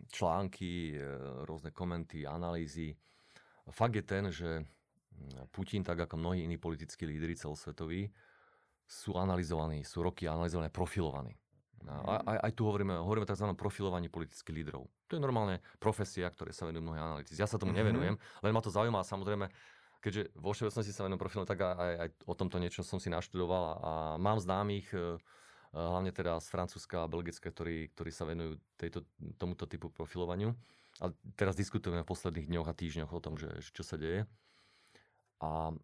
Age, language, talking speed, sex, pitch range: 30-49, Slovak, 160 wpm, male, 80-100 Hz